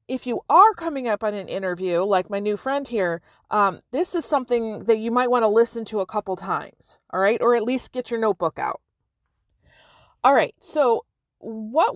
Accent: American